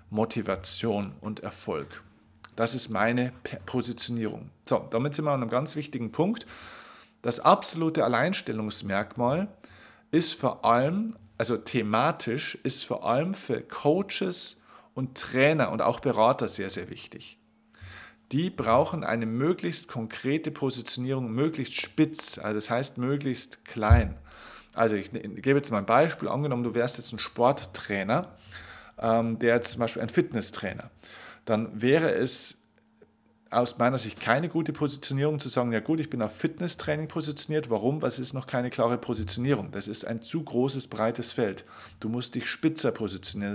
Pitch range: 110-145 Hz